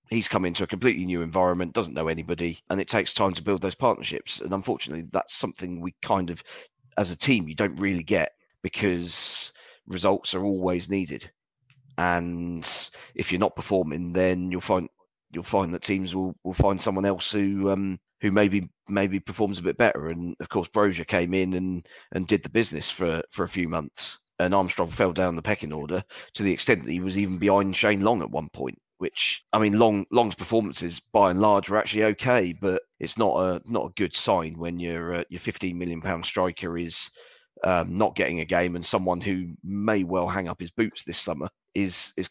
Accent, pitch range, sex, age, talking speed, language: British, 90-100 Hz, male, 40-59, 205 wpm, English